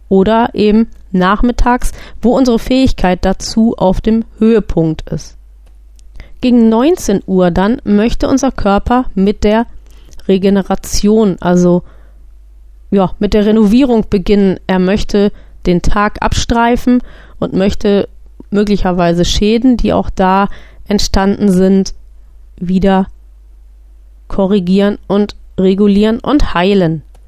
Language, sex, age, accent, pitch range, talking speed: German, female, 30-49, German, 180-225 Hz, 105 wpm